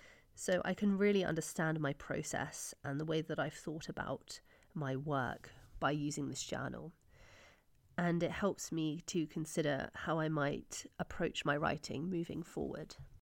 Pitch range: 155-185 Hz